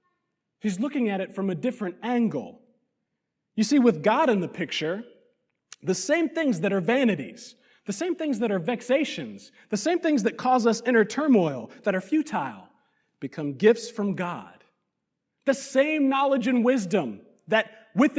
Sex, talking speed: male, 160 wpm